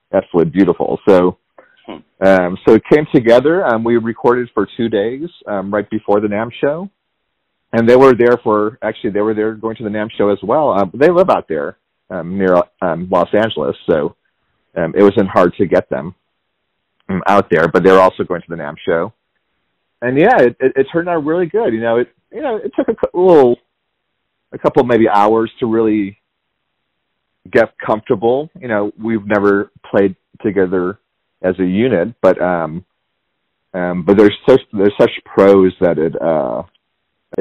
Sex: male